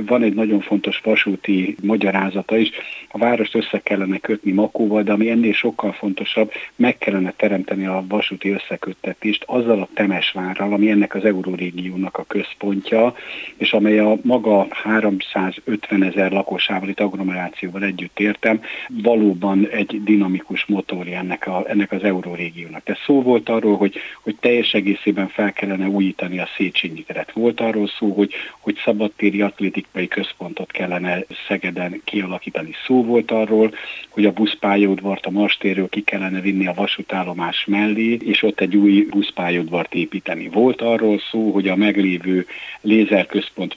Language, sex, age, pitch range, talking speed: Hungarian, male, 60-79, 95-110 Hz, 145 wpm